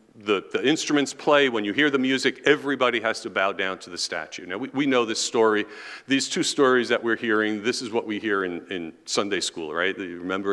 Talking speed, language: 235 wpm, English